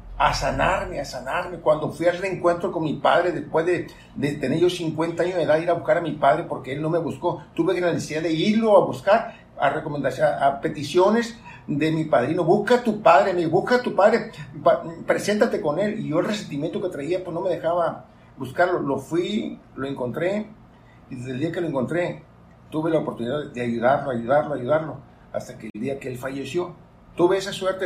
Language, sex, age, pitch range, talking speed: Spanish, male, 50-69, 140-175 Hz, 210 wpm